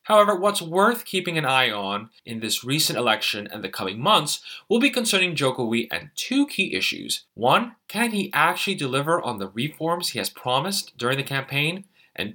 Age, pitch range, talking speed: 20-39, 110-165 Hz, 185 wpm